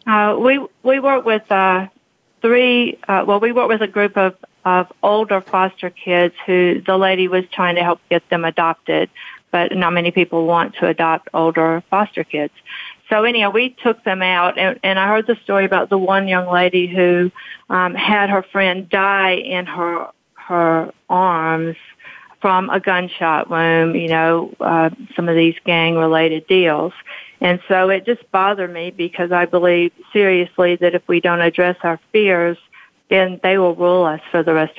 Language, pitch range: English, 170-195 Hz